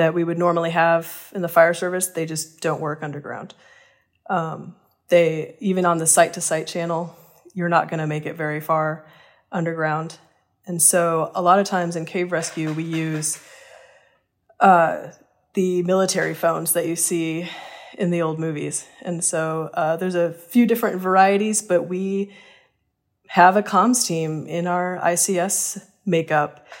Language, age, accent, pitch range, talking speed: English, 20-39, American, 165-180 Hz, 160 wpm